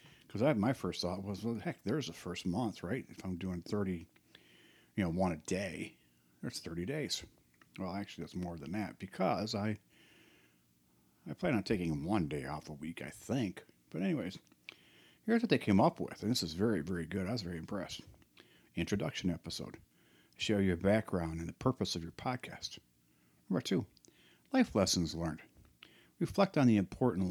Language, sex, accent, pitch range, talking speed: English, male, American, 85-105 Hz, 180 wpm